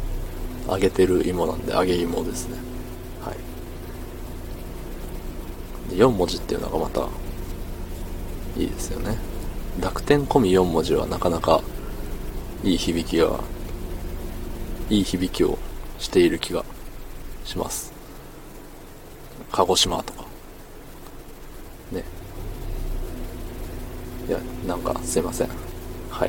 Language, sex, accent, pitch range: Japanese, male, native, 85-100 Hz